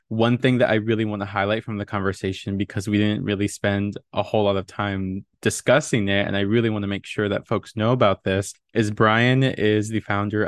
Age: 20-39